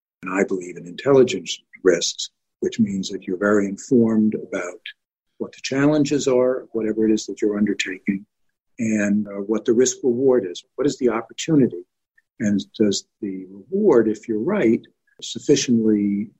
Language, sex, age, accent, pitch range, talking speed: English, male, 60-79, American, 105-140 Hz, 155 wpm